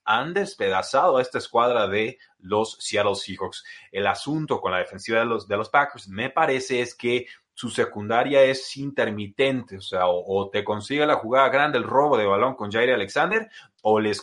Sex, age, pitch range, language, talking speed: male, 30-49, 105-140 Hz, Spanish, 185 wpm